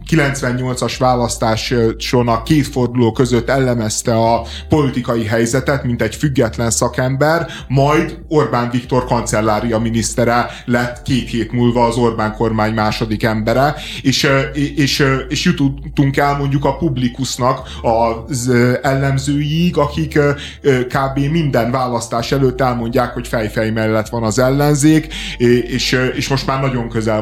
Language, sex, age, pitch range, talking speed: Hungarian, male, 30-49, 120-145 Hz, 125 wpm